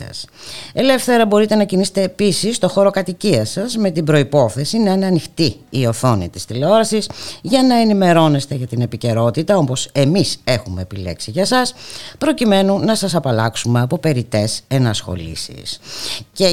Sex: female